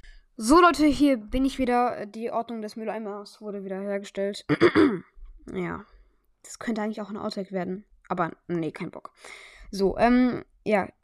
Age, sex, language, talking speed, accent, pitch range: 20-39, female, German, 150 wpm, German, 195-240 Hz